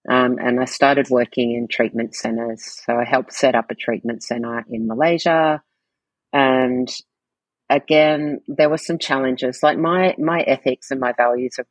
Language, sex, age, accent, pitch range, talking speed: English, female, 40-59, Australian, 120-130 Hz, 165 wpm